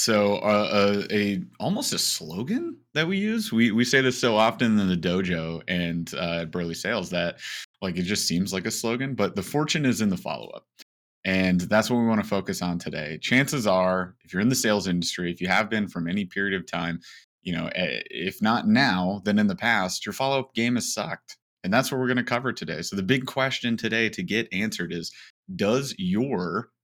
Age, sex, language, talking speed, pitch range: 30-49, male, English, 215 wpm, 90-120 Hz